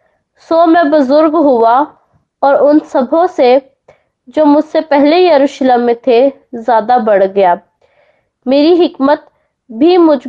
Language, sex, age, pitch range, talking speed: Hindi, female, 20-39, 245-300 Hz, 120 wpm